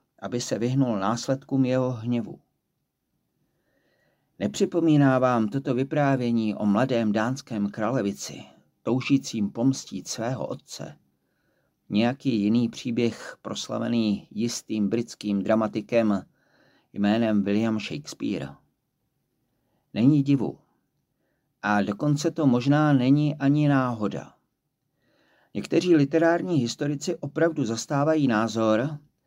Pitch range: 105-145 Hz